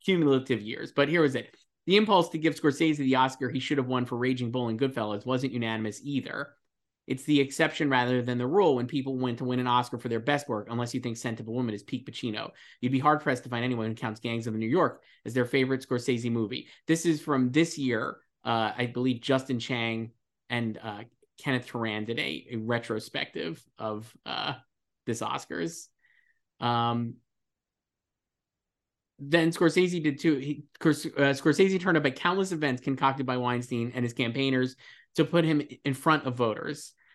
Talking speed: 185 wpm